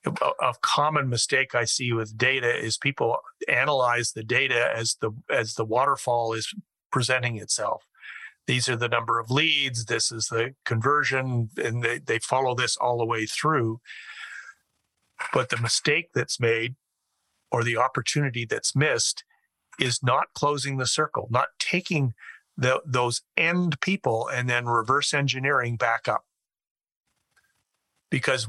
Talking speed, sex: 140 wpm, male